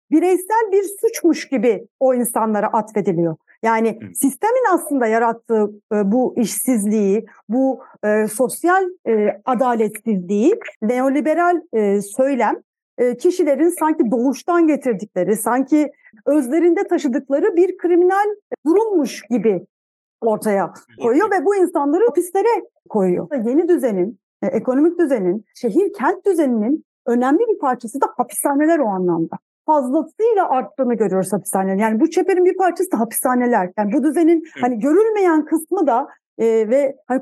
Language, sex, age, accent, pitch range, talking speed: Turkish, female, 50-69, native, 225-335 Hz, 115 wpm